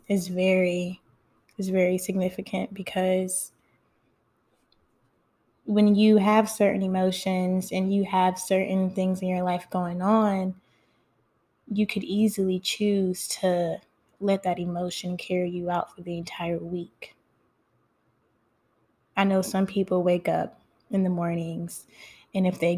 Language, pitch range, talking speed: English, 175-205 Hz, 125 wpm